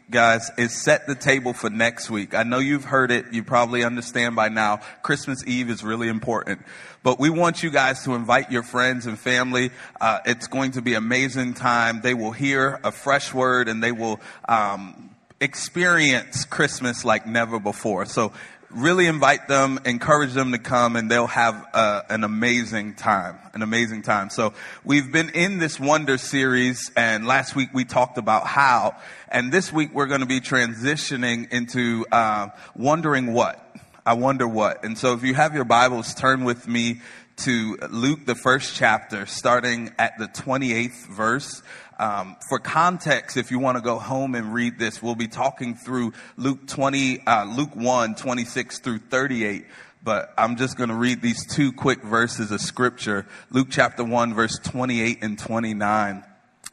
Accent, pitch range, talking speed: American, 115-135 Hz, 175 wpm